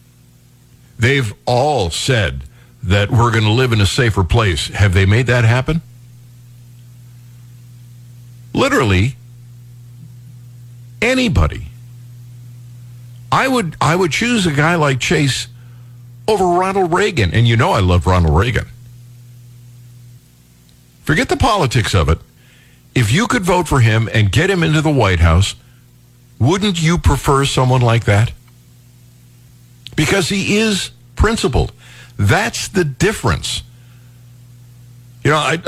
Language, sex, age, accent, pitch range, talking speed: English, male, 50-69, American, 105-130 Hz, 120 wpm